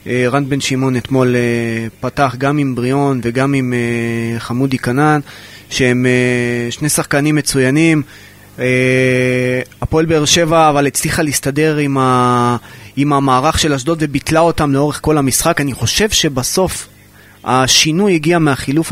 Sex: male